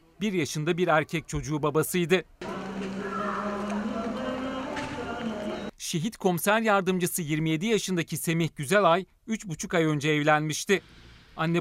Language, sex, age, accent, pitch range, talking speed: Turkish, male, 40-59, native, 150-185 Hz, 95 wpm